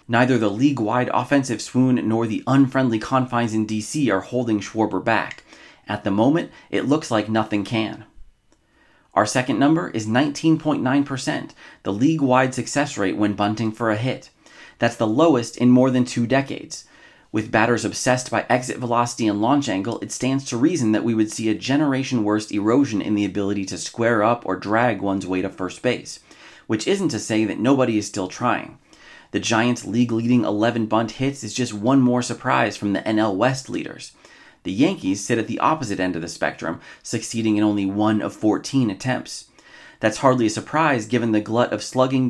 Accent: American